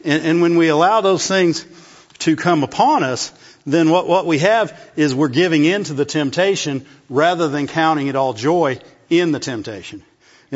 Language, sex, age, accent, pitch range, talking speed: English, male, 50-69, American, 140-175 Hz, 190 wpm